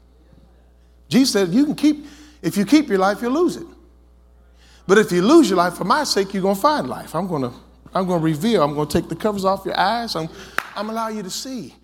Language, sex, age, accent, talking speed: English, male, 50-69, American, 250 wpm